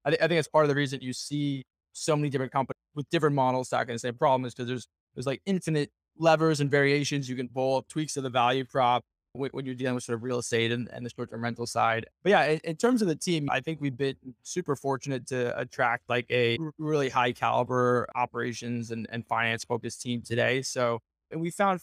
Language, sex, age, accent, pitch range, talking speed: English, male, 20-39, American, 125-145 Hz, 240 wpm